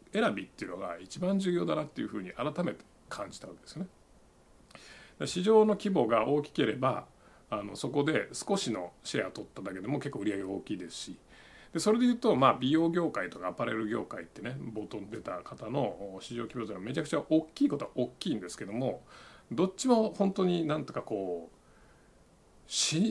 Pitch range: 100-165 Hz